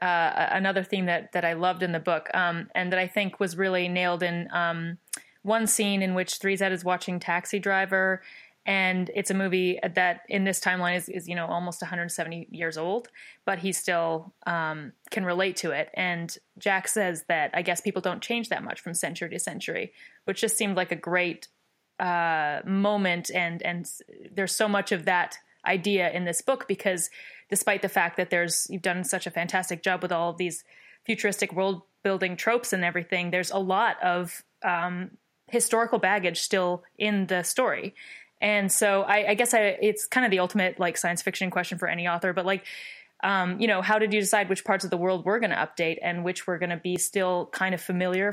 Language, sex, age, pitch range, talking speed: English, female, 20-39, 175-200 Hz, 205 wpm